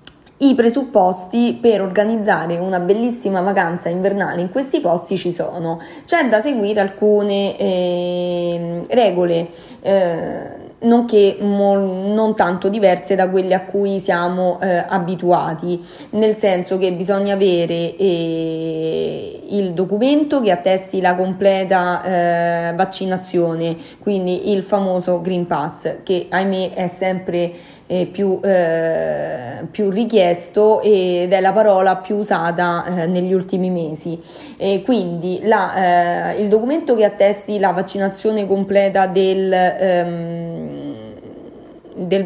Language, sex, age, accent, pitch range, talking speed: Italian, female, 20-39, native, 175-210 Hz, 110 wpm